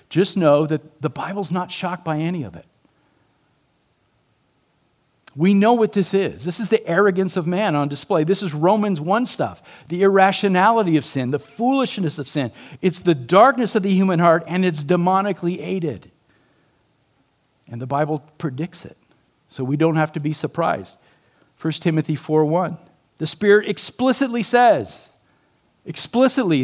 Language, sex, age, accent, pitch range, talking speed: English, male, 50-69, American, 150-210 Hz, 155 wpm